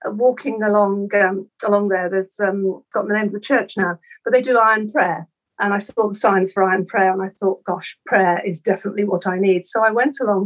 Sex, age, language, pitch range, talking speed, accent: female, 50-69, English, 190-225 Hz, 235 wpm, British